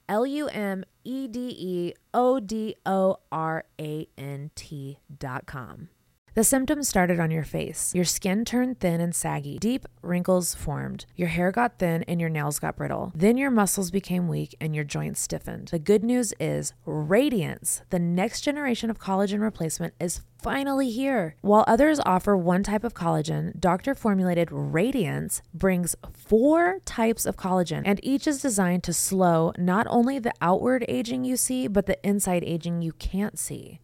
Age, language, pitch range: 20-39, English, 160-220 Hz